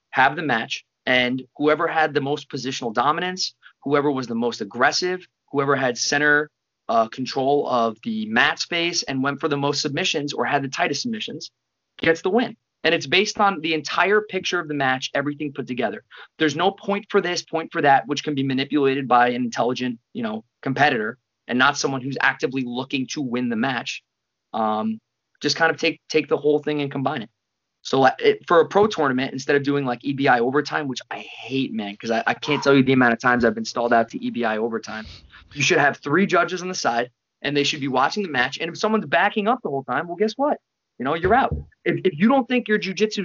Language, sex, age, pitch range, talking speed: English, male, 20-39, 130-180 Hz, 220 wpm